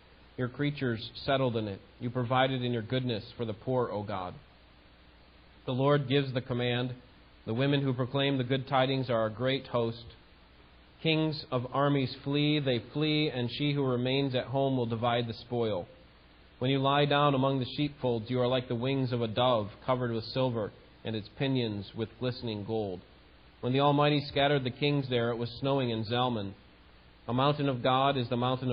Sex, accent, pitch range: male, American, 110-135 Hz